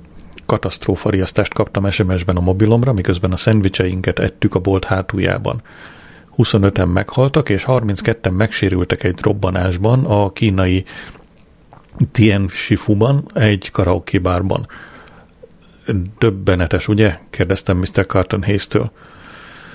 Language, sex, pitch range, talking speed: Hungarian, male, 95-115 Hz, 90 wpm